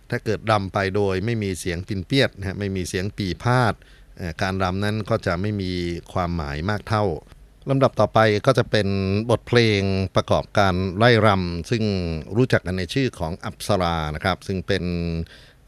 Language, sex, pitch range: Thai, male, 85-105 Hz